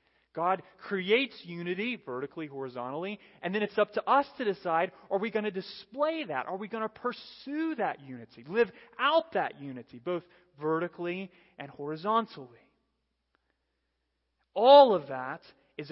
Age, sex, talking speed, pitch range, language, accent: 30-49, male, 145 wpm, 120-180 Hz, English, American